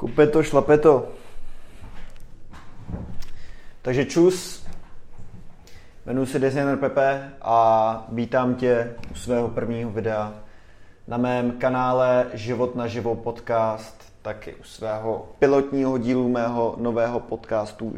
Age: 20-39